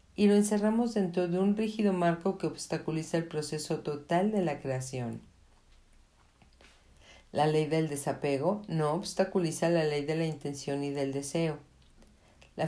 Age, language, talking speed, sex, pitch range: 50-69, Spanish, 145 wpm, female, 145-185 Hz